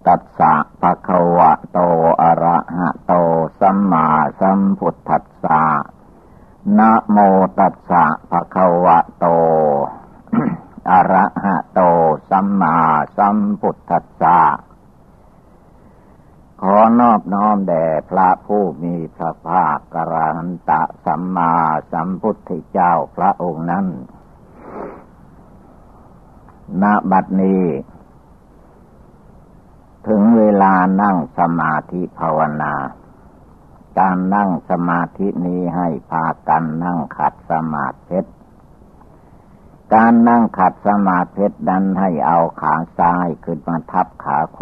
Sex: male